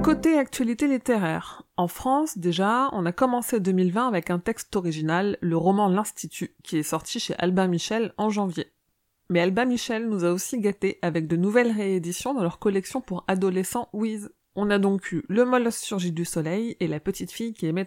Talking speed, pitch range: 190 wpm, 175-230 Hz